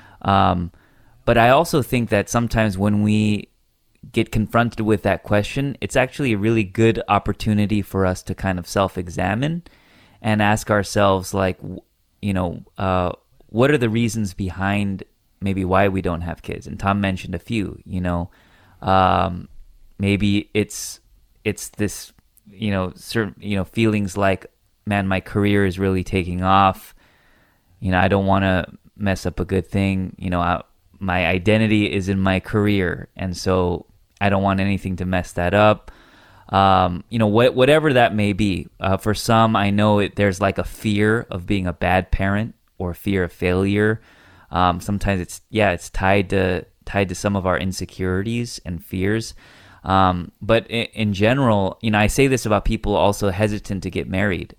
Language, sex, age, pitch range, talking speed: English, male, 20-39, 95-105 Hz, 175 wpm